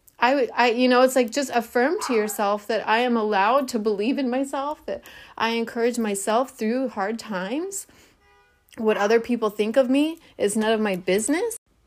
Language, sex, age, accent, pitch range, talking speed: English, female, 30-49, American, 195-240 Hz, 185 wpm